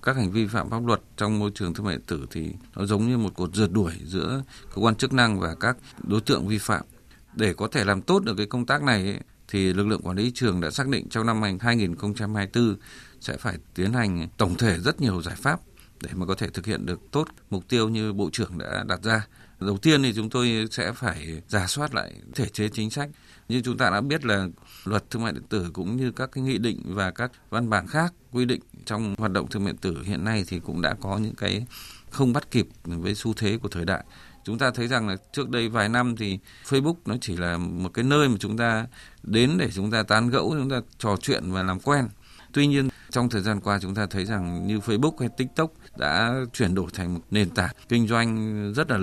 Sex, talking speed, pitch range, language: male, 245 wpm, 100-125 Hz, Vietnamese